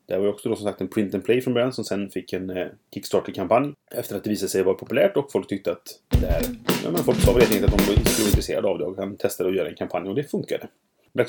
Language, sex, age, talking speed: Swedish, male, 30-49, 280 wpm